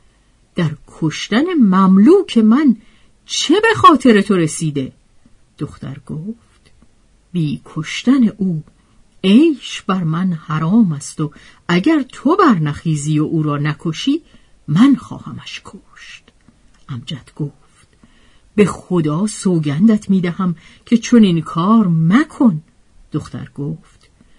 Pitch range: 160-245 Hz